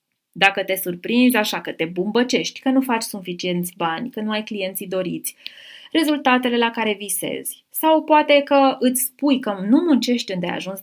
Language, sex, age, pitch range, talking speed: Romanian, female, 20-39, 195-260 Hz, 170 wpm